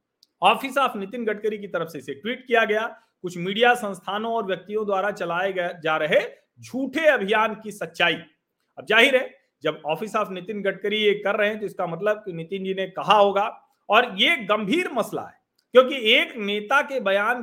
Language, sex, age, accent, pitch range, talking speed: Hindi, male, 40-59, native, 190-250 Hz, 115 wpm